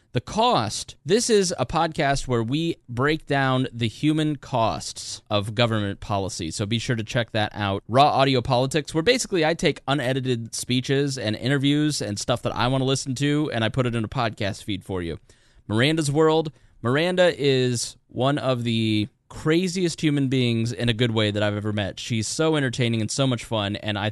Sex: male